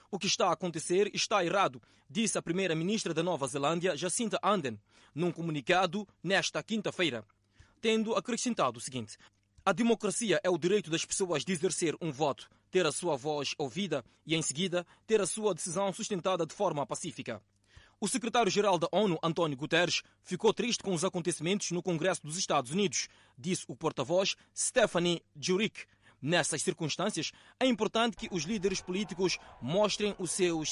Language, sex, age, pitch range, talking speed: Portuguese, male, 20-39, 150-200 Hz, 160 wpm